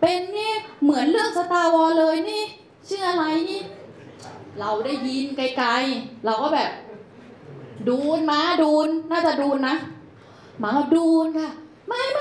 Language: Thai